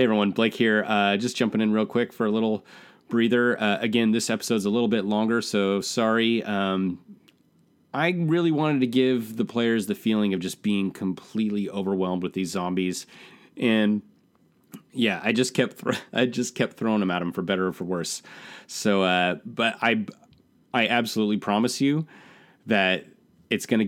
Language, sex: English, male